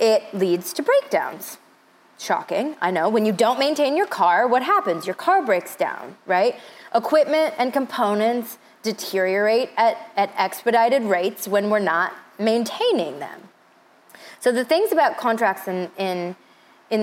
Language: English